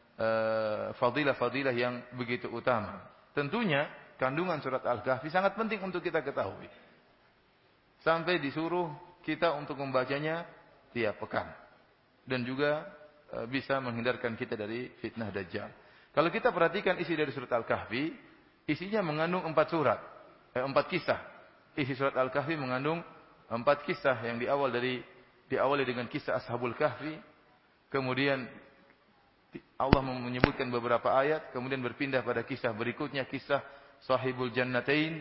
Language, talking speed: English, 125 wpm